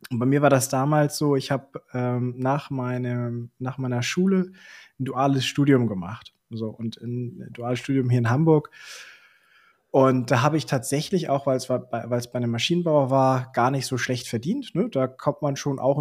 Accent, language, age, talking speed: German, German, 20-39, 185 wpm